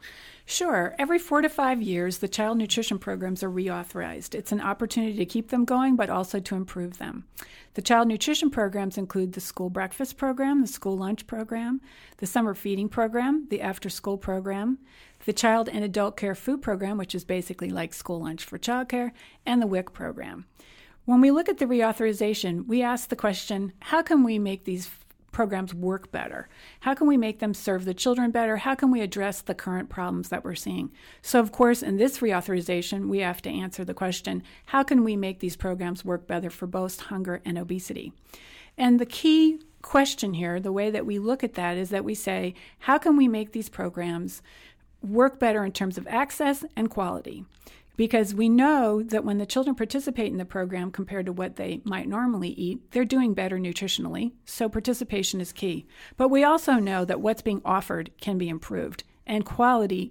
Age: 40-59